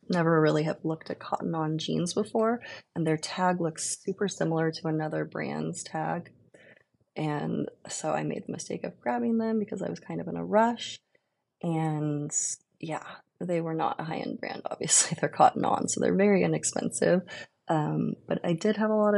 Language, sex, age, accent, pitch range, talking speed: English, female, 20-39, American, 155-185 Hz, 185 wpm